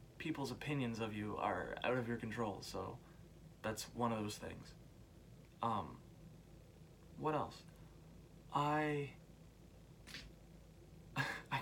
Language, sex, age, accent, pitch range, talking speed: English, male, 20-39, American, 120-150 Hz, 105 wpm